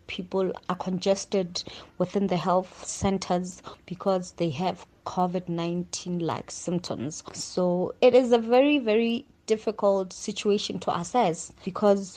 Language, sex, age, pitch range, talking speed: English, female, 20-39, 175-205 Hz, 120 wpm